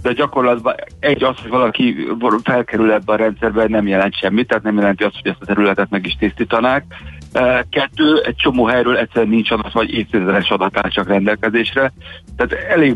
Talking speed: 170 wpm